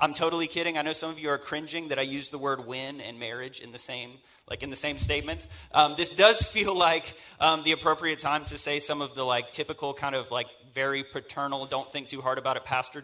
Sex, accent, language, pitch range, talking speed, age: male, American, English, 130-165 Hz, 250 wpm, 30-49